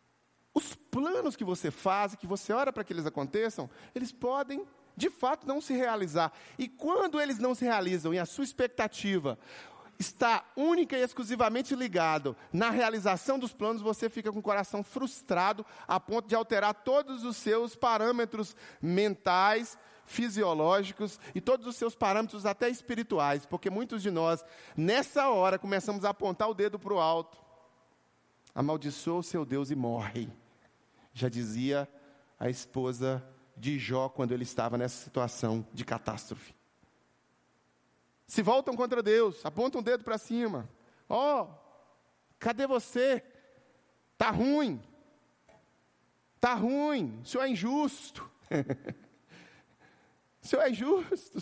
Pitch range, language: 155-250 Hz, Portuguese